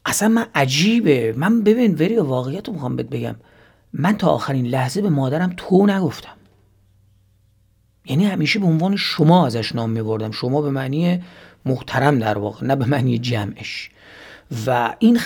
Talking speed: 150 wpm